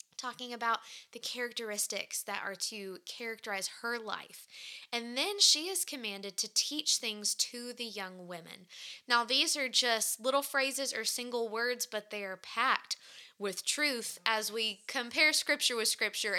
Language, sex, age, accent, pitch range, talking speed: English, female, 20-39, American, 195-245 Hz, 155 wpm